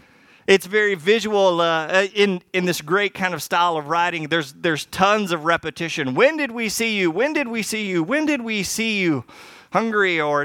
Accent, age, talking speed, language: American, 30-49, 200 wpm, English